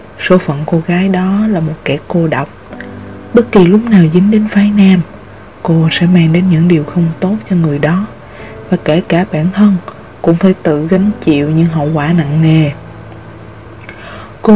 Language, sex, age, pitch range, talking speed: Vietnamese, female, 20-39, 150-190 Hz, 185 wpm